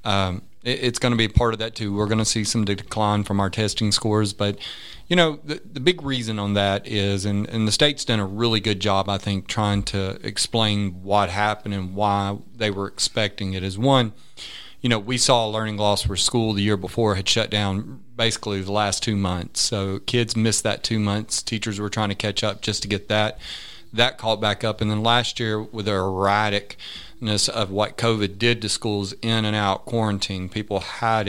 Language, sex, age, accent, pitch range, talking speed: English, male, 40-59, American, 100-115 Hz, 215 wpm